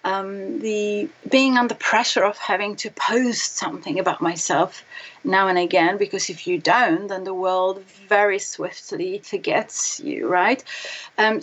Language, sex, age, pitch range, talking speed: English, female, 30-49, 205-280 Hz, 145 wpm